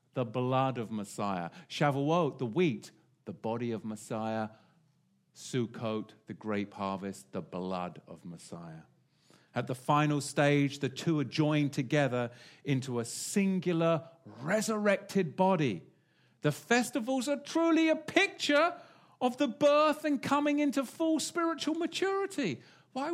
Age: 50-69